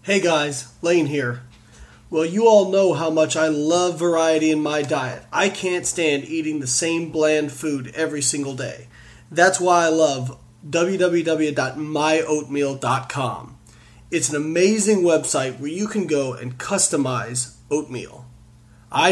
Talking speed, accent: 140 wpm, American